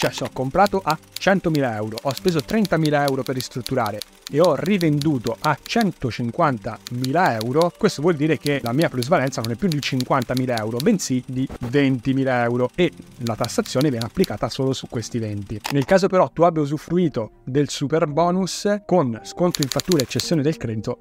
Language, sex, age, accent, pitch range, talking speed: Italian, male, 30-49, native, 125-175 Hz, 175 wpm